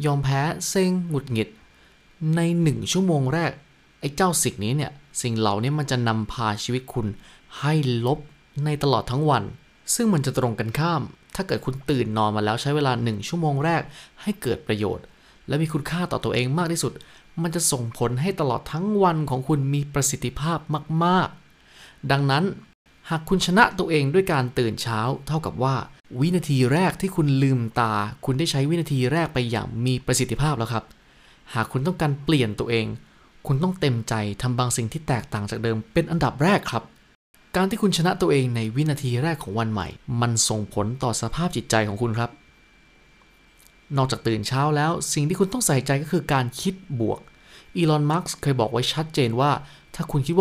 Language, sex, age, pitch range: Thai, male, 20-39, 120-160 Hz